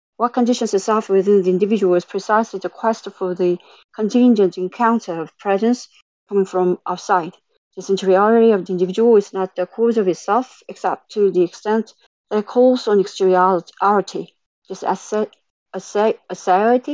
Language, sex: English, female